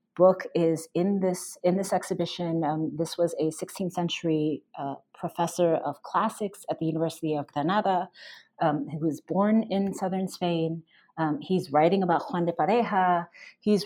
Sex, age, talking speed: female, 30-49, 160 wpm